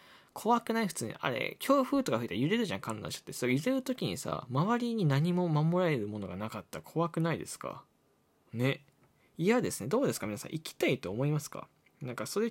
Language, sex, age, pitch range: Japanese, male, 20-39, 125-205 Hz